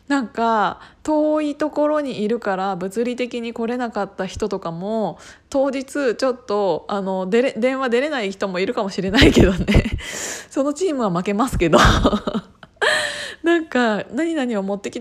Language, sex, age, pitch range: Japanese, female, 20-39, 195-250 Hz